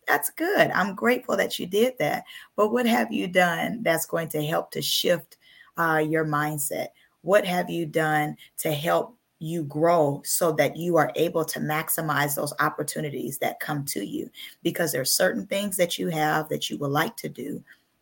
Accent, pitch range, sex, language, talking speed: American, 155-180 Hz, female, English, 190 wpm